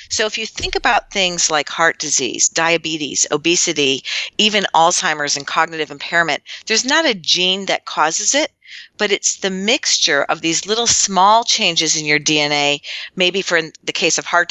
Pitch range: 155-195 Hz